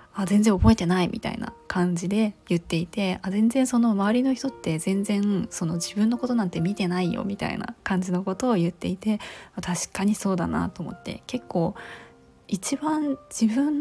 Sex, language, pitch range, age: female, Japanese, 180-230 Hz, 20-39